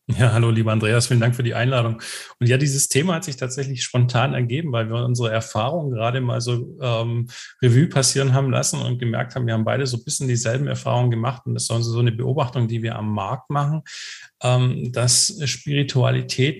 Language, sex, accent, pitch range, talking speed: German, male, German, 115-130 Hz, 205 wpm